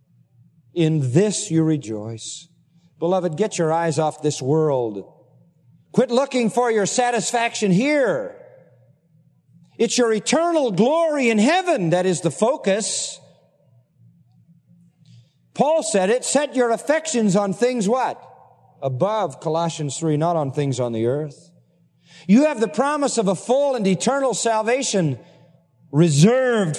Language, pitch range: English, 160-205 Hz